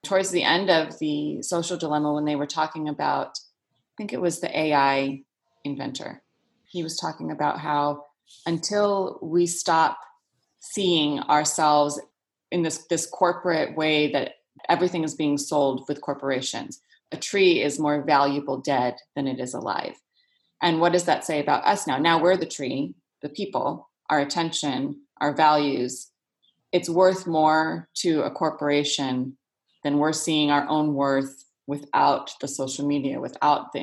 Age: 30-49